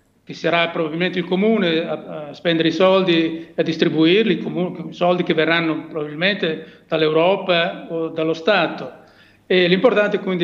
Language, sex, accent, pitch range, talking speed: Italian, male, native, 160-185 Hz, 140 wpm